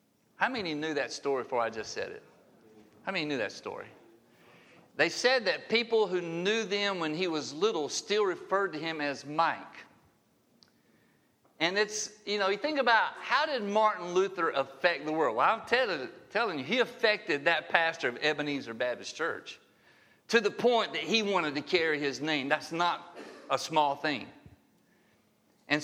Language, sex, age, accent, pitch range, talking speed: English, male, 50-69, American, 135-195 Hz, 170 wpm